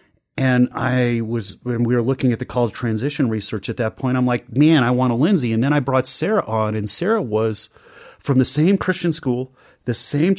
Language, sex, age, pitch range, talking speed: English, male, 30-49, 110-140 Hz, 225 wpm